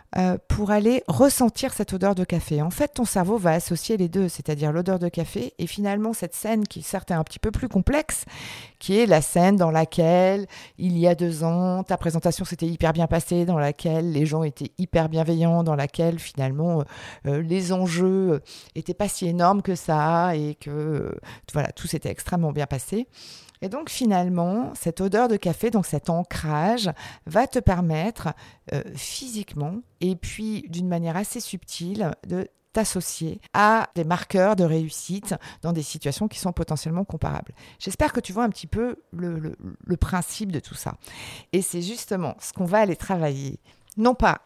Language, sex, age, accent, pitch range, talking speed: French, female, 50-69, French, 160-200 Hz, 180 wpm